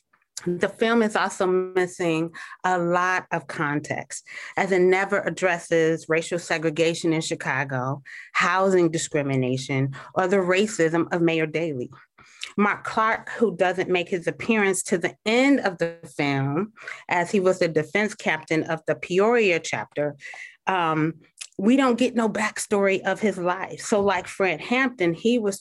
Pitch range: 165-195 Hz